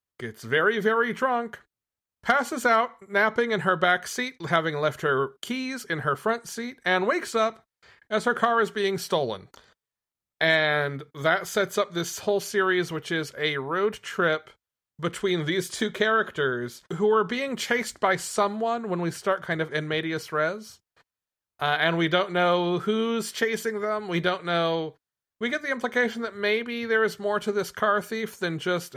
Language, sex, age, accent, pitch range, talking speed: English, male, 40-59, American, 150-210 Hz, 175 wpm